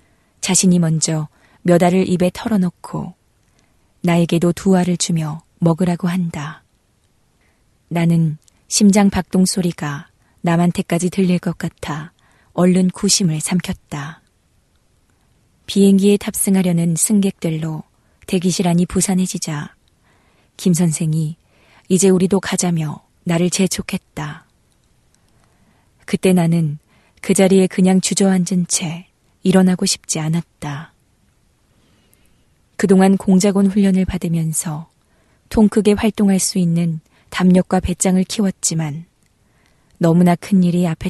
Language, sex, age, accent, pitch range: Korean, female, 20-39, native, 165-190 Hz